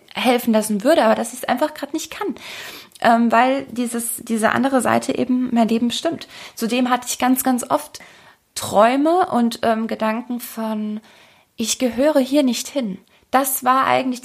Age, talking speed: 20-39, 170 wpm